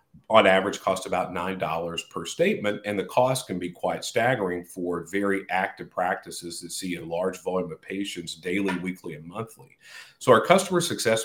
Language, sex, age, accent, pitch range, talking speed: English, male, 40-59, American, 90-115 Hz, 175 wpm